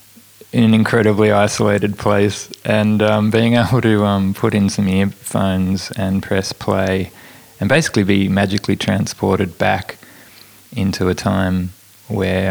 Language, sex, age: English, male, 20-39